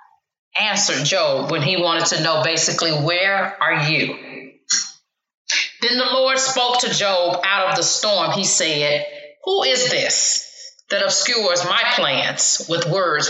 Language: English